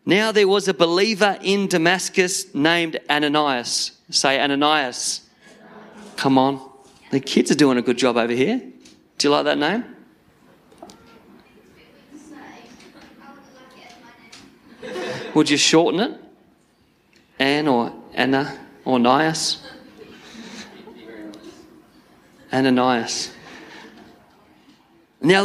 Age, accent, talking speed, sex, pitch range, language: 40-59, Australian, 90 wpm, male, 135-210 Hz, English